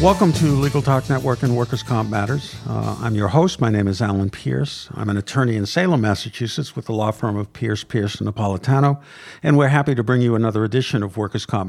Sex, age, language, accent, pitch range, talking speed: male, 60-79, English, American, 105-135 Hz, 225 wpm